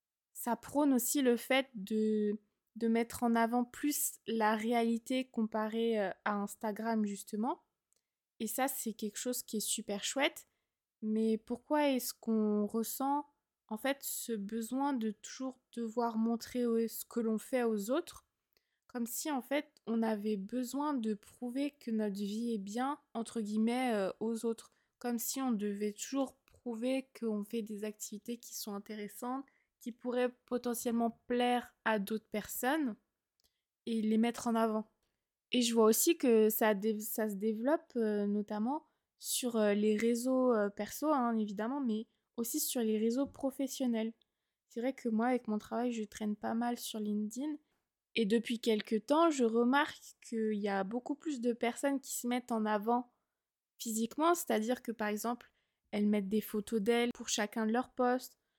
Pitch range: 220-250 Hz